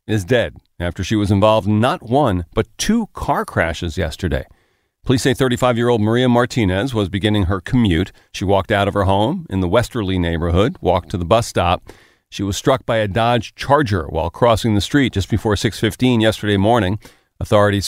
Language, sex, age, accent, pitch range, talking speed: English, male, 40-59, American, 100-125 Hz, 185 wpm